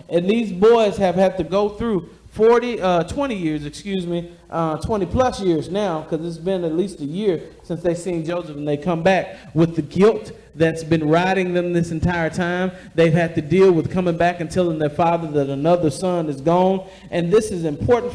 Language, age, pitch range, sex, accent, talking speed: English, 40-59, 165-215 Hz, male, American, 210 wpm